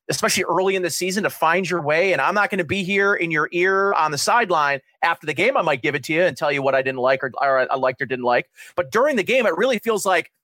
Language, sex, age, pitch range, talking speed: English, male, 30-49, 155-200 Hz, 305 wpm